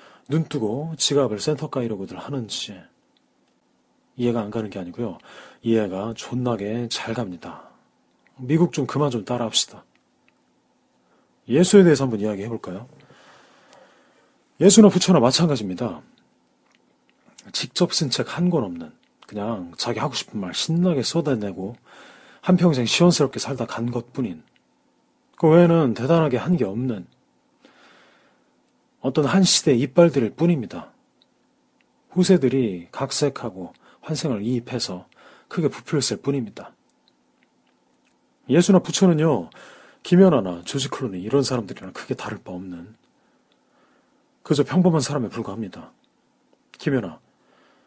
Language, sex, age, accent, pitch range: Korean, male, 40-59, native, 115-175 Hz